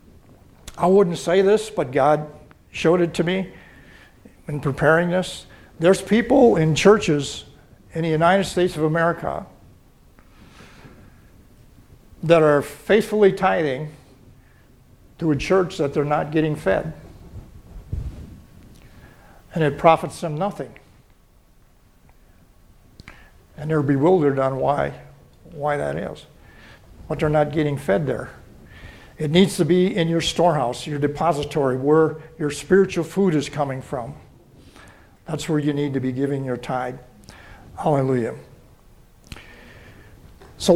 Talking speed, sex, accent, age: 120 wpm, male, American, 60-79